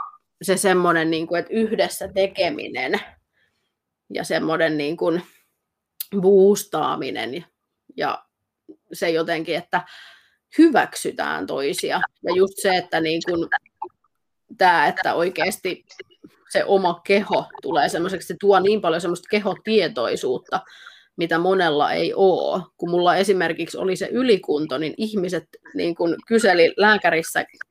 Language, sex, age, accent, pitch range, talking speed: Finnish, female, 30-49, native, 175-235 Hz, 95 wpm